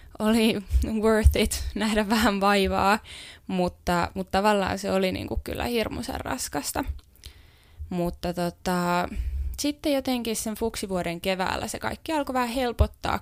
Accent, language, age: native, Finnish, 20-39